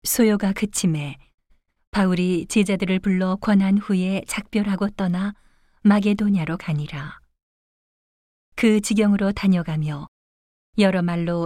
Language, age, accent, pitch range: Korean, 40-59, native, 160-205 Hz